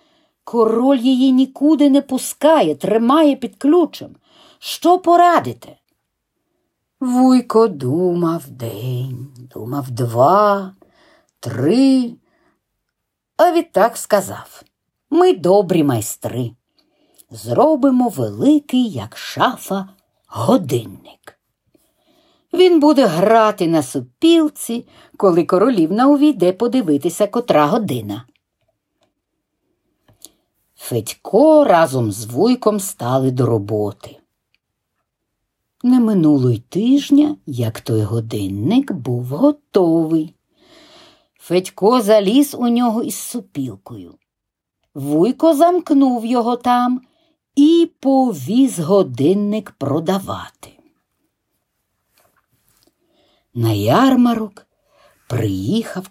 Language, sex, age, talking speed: Ukrainian, female, 50-69, 75 wpm